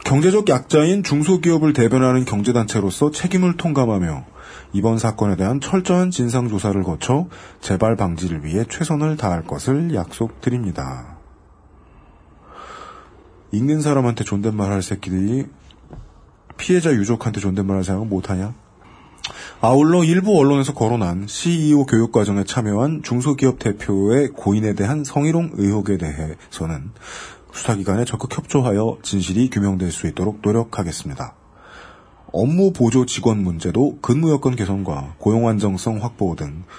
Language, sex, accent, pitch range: Korean, male, native, 95-130 Hz